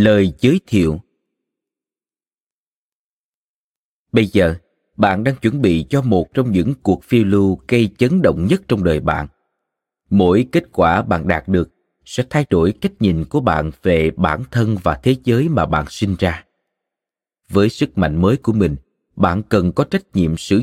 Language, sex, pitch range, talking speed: Vietnamese, male, 90-125 Hz, 170 wpm